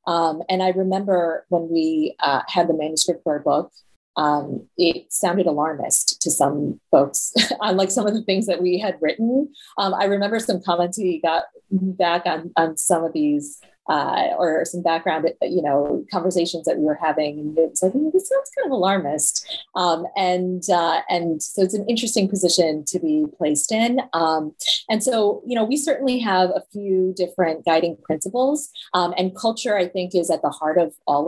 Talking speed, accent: 190 wpm, American